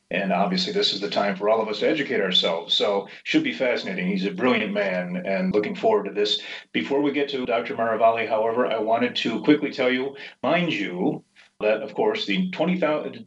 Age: 30-49